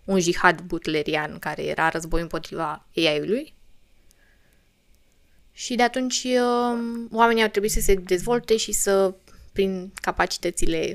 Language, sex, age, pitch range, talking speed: Romanian, female, 20-39, 180-240 Hz, 115 wpm